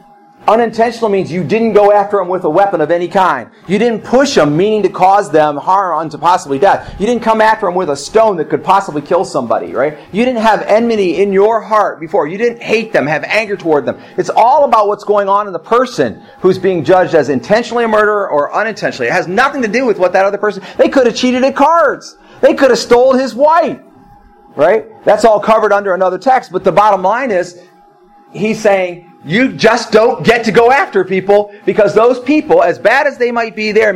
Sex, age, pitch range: male, 40-59, 185-235 Hz